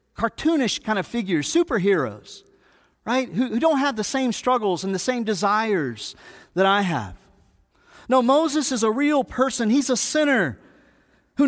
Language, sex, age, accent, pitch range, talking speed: English, male, 40-59, American, 210-280 Hz, 150 wpm